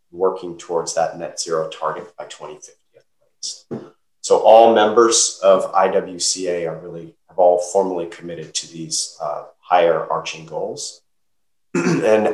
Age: 30-49